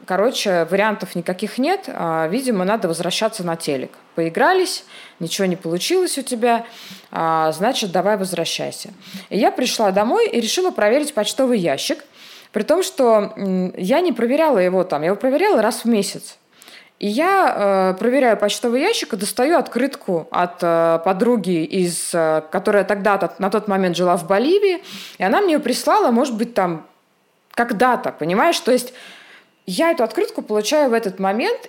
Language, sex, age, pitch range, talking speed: Russian, female, 20-39, 185-260 Hz, 150 wpm